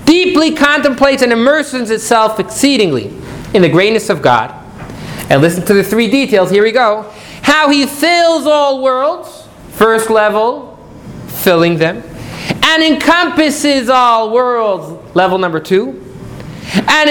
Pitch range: 180-270 Hz